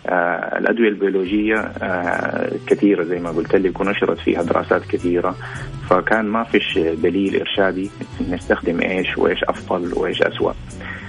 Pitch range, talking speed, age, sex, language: 90-110 Hz, 130 wpm, 30-49, male, Arabic